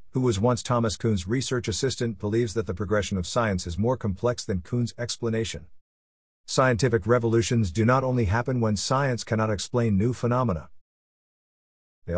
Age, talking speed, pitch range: 50-69, 160 wpm, 95-125 Hz